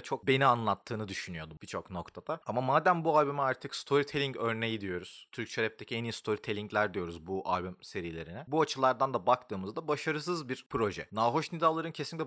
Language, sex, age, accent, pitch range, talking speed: Turkish, male, 30-49, native, 105-150 Hz, 160 wpm